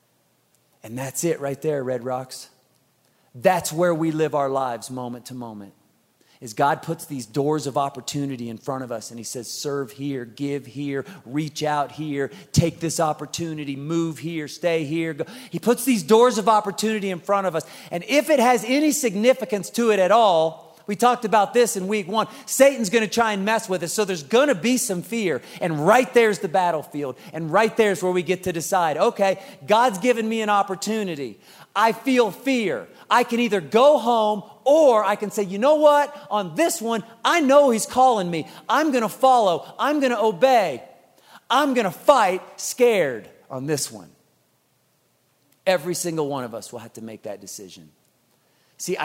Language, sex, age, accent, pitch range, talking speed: English, male, 40-59, American, 150-230 Hz, 190 wpm